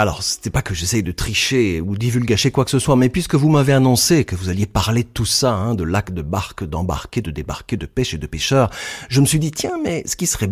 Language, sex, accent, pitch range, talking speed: French, male, French, 95-135 Hz, 275 wpm